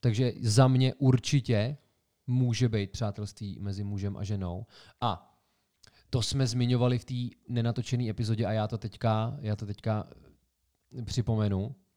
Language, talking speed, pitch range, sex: Czech, 135 wpm, 100-120 Hz, male